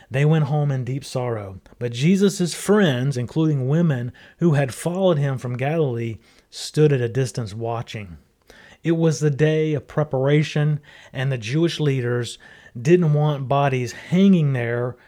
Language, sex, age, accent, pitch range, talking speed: English, male, 30-49, American, 125-155 Hz, 145 wpm